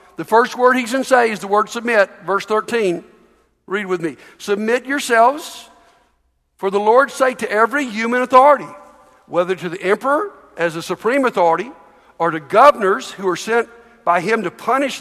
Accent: American